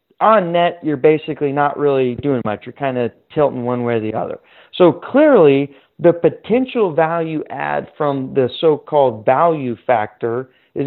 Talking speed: 160 wpm